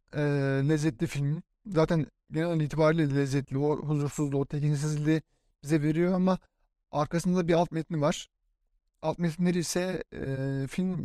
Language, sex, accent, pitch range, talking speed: Turkish, male, native, 150-170 Hz, 125 wpm